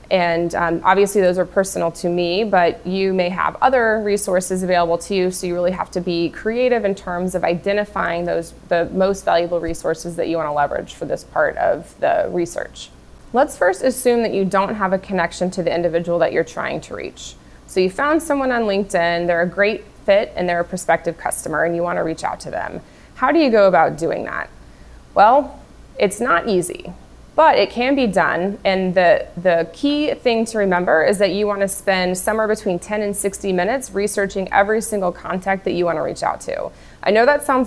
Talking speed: 210 wpm